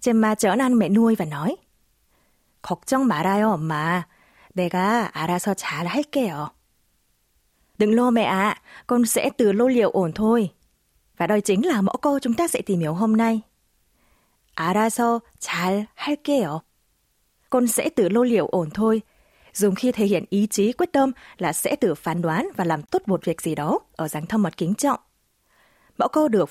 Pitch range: 170-245 Hz